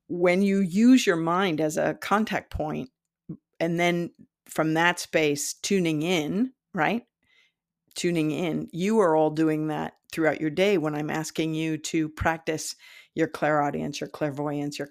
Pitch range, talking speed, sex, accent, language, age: 150-180 Hz, 155 wpm, female, American, English, 50-69